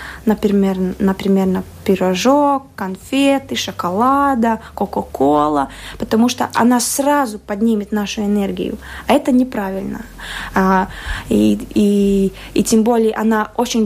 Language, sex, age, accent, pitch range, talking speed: Russian, female, 20-39, native, 195-235 Hz, 105 wpm